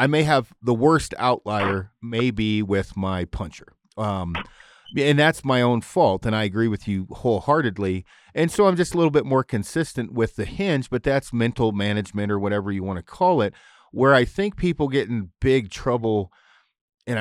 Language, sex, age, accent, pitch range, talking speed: English, male, 40-59, American, 100-130 Hz, 190 wpm